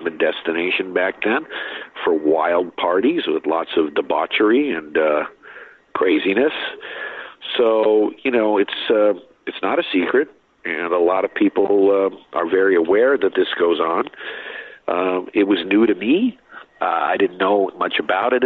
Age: 50-69